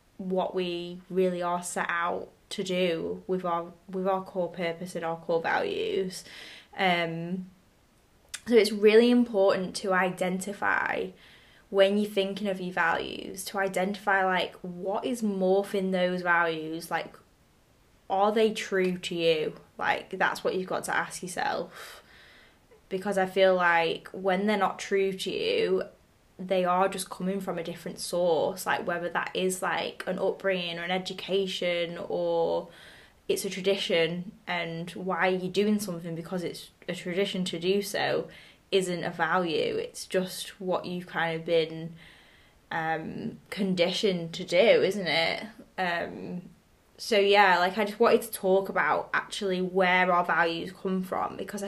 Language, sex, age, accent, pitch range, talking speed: English, female, 10-29, British, 175-200 Hz, 150 wpm